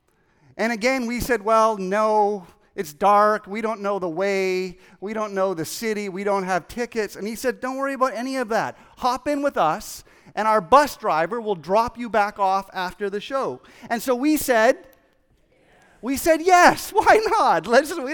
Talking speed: 190 wpm